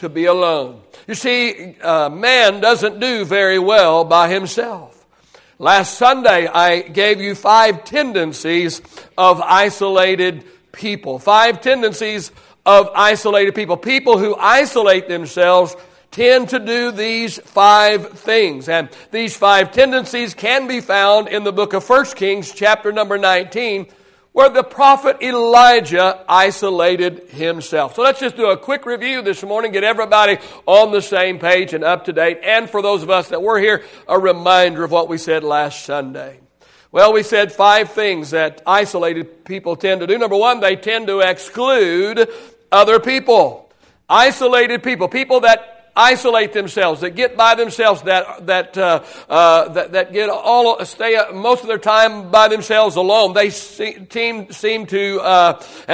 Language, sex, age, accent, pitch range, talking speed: English, male, 60-79, American, 180-230 Hz, 155 wpm